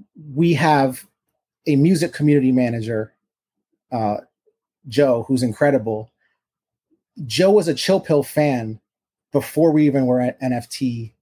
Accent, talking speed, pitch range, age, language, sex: American, 120 wpm, 125-150 Hz, 30-49, English, male